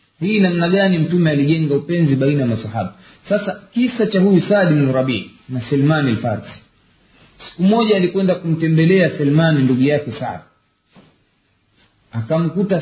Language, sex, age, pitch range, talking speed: Swahili, male, 40-59, 125-180 Hz, 125 wpm